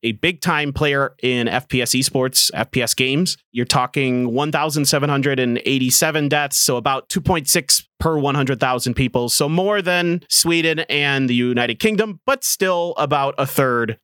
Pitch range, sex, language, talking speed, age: 115-150 Hz, male, English, 135 wpm, 30-49